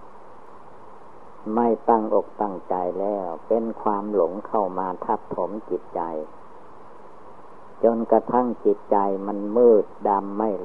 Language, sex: Thai, female